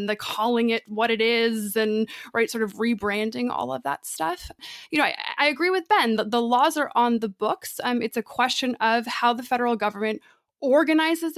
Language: English